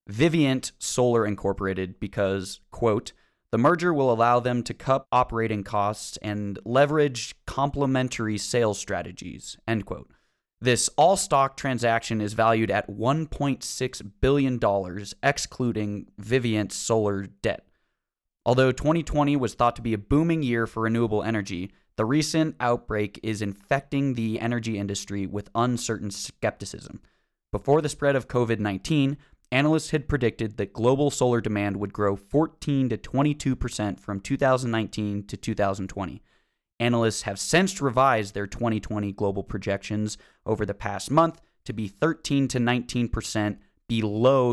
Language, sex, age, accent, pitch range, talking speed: English, male, 20-39, American, 105-135 Hz, 130 wpm